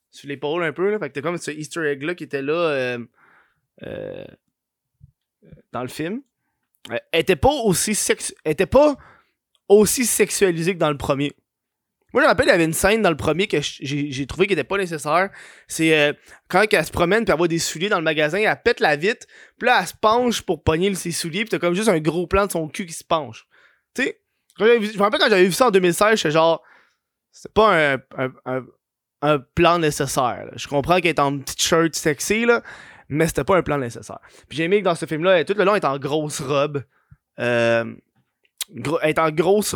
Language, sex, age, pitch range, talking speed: French, male, 20-39, 145-190 Hz, 225 wpm